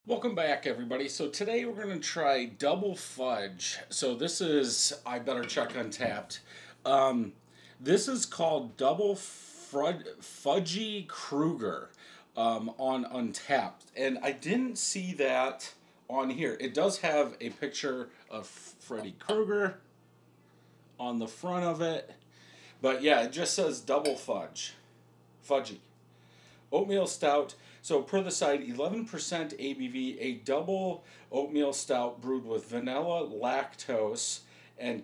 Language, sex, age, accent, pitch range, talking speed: English, male, 40-59, American, 115-170 Hz, 125 wpm